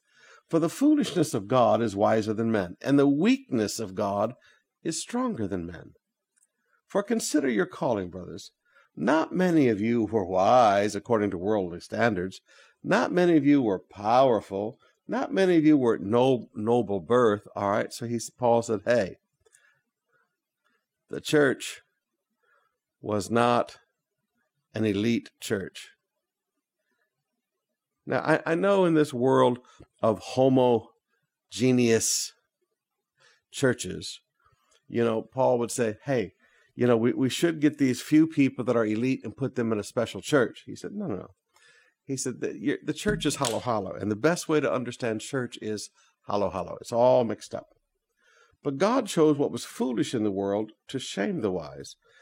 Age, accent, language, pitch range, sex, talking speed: 50-69, American, English, 110-150 Hz, male, 155 wpm